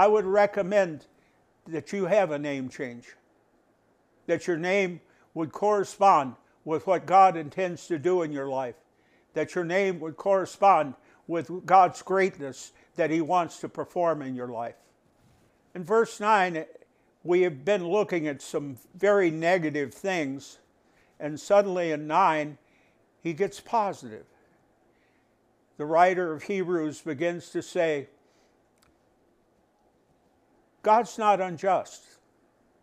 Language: English